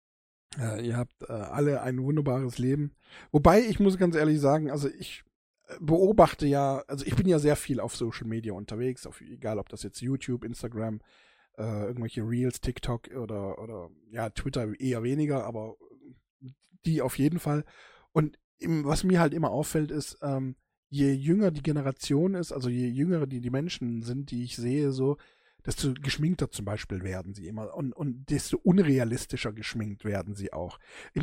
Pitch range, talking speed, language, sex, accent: 120-155 Hz, 170 wpm, German, male, German